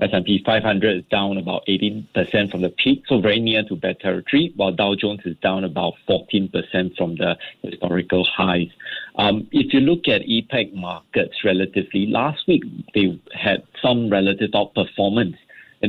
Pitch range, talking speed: 95-110 Hz, 160 wpm